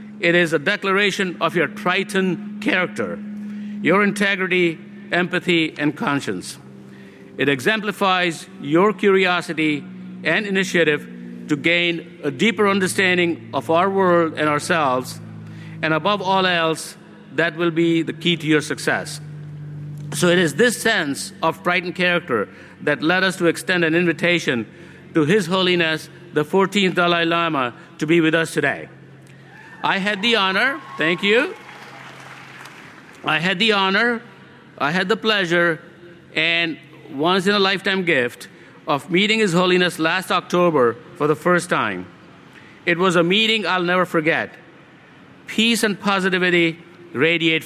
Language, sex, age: English, male, 60-79